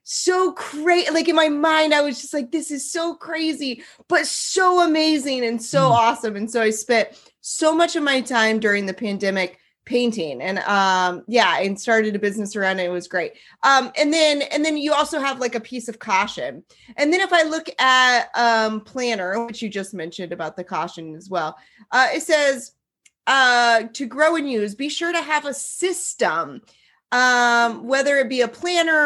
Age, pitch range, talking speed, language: 30-49, 215-285 Hz, 195 wpm, English